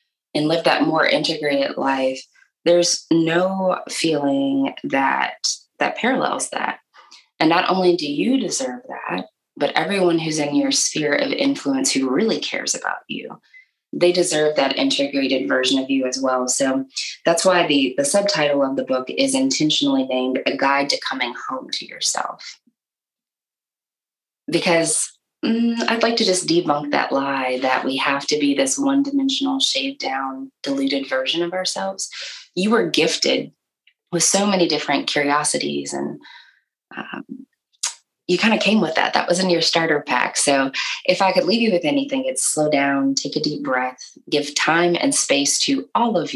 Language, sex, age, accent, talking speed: English, female, 20-39, American, 165 wpm